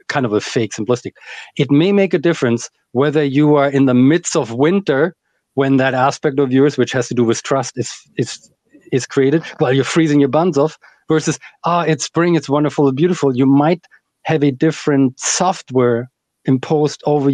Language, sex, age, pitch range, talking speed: English, male, 40-59, 130-155 Hz, 195 wpm